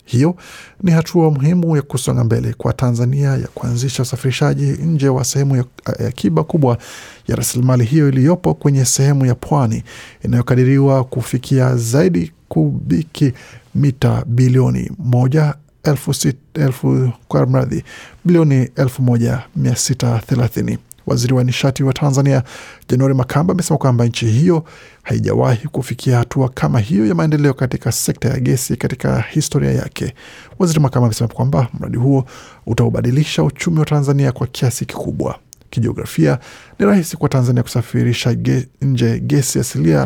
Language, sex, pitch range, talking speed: Swahili, male, 120-145 Hz, 125 wpm